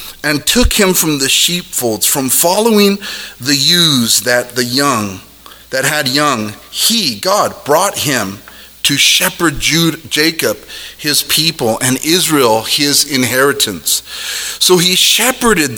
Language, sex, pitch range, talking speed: English, male, 140-190 Hz, 120 wpm